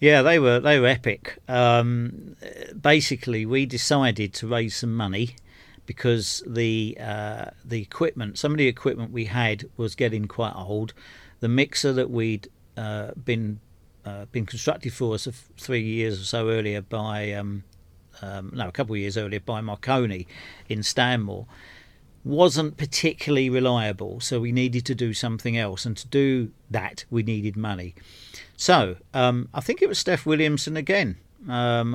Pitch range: 105-125 Hz